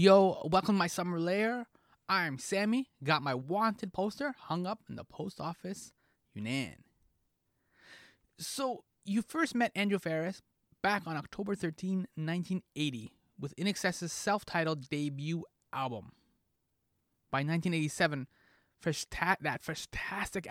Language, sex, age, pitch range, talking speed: English, male, 20-39, 135-195 Hz, 125 wpm